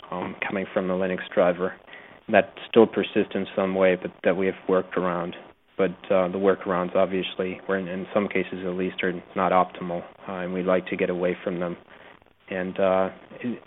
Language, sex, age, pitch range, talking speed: English, male, 30-49, 95-100 Hz, 200 wpm